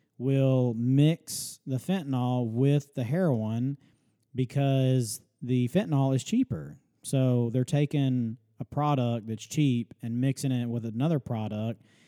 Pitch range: 115-135 Hz